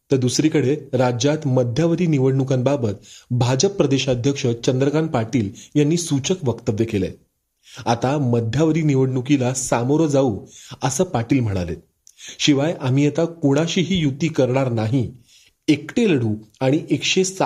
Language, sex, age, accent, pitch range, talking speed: Marathi, male, 30-49, native, 120-150 Hz, 110 wpm